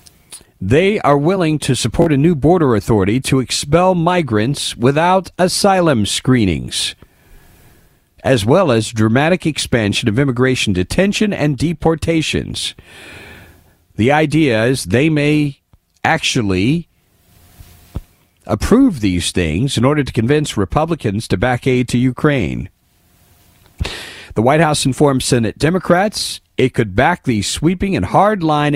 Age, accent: 50-69, American